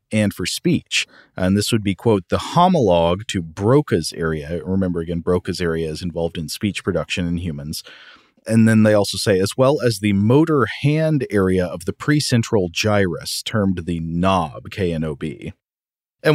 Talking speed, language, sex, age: 165 wpm, English, male, 40-59